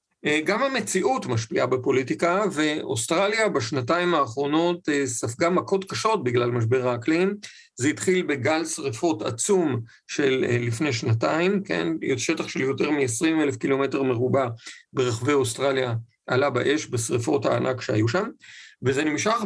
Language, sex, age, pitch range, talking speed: Hebrew, male, 50-69, 130-185 Hz, 120 wpm